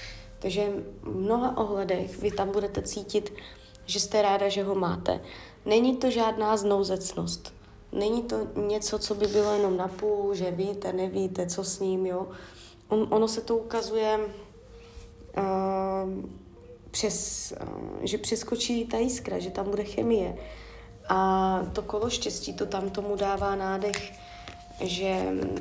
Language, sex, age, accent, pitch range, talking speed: Czech, female, 20-39, native, 180-220 Hz, 130 wpm